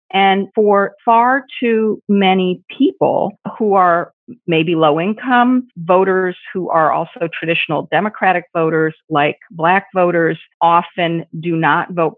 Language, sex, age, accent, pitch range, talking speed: English, female, 40-59, American, 175-220 Hz, 120 wpm